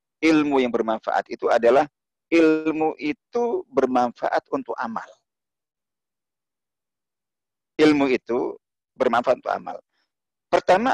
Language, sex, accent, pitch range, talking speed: Indonesian, male, native, 120-165 Hz, 90 wpm